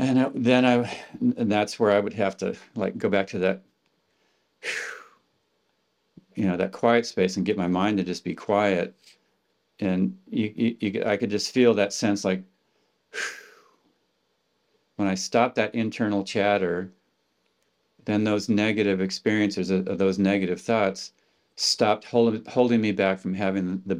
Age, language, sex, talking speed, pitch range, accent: 50-69, English, male, 155 wpm, 95-115 Hz, American